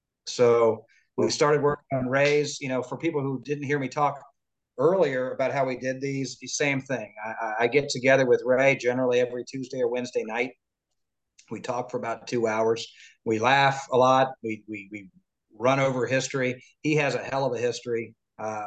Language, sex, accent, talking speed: English, male, American, 195 wpm